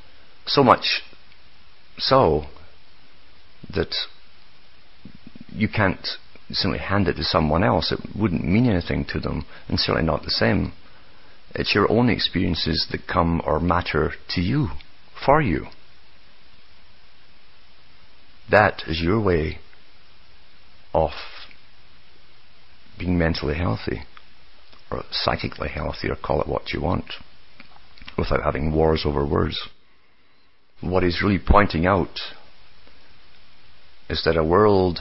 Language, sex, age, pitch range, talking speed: English, male, 50-69, 75-90 Hz, 115 wpm